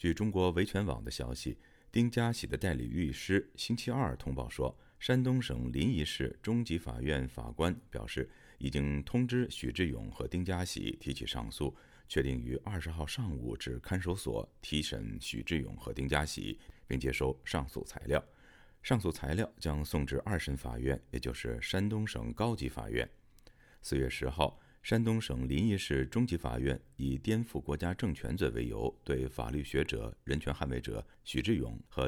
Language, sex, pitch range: Chinese, male, 65-110 Hz